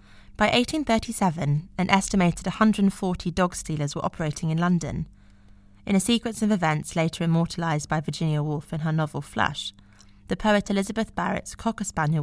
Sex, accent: female, British